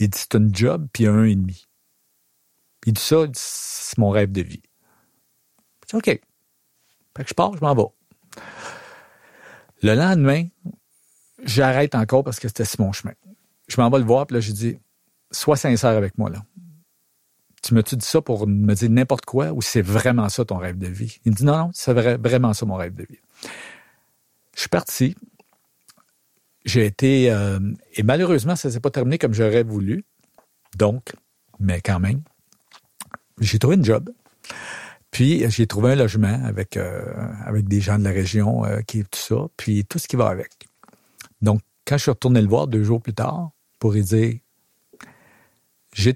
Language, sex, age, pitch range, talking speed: French, male, 50-69, 105-130 Hz, 190 wpm